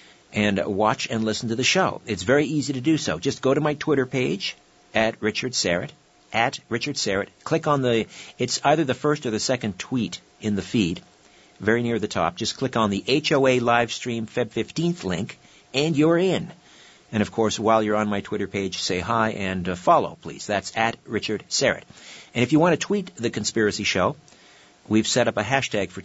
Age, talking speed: 50-69, 205 wpm